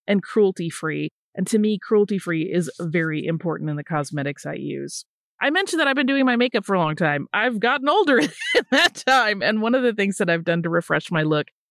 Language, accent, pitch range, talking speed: English, American, 165-220 Hz, 225 wpm